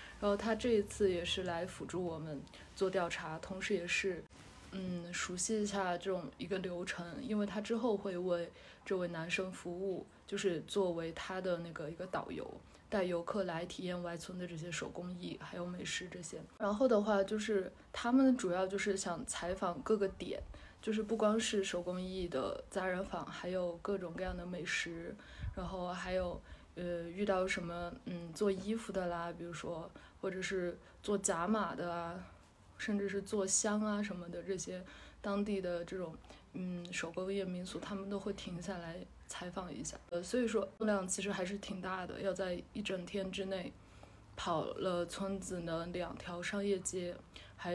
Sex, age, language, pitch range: female, 20-39, Chinese, 175-200 Hz